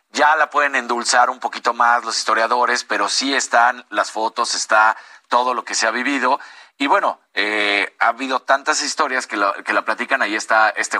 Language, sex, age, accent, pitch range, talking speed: Spanish, male, 40-59, Mexican, 110-130 Hz, 195 wpm